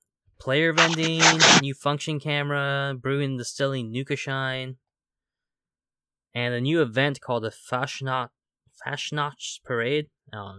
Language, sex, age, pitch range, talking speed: English, male, 20-39, 105-135 Hz, 110 wpm